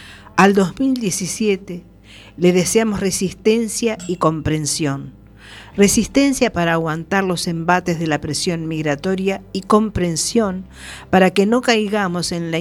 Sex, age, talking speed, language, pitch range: female, 50-69, 115 wpm, Spanish, 140-180 Hz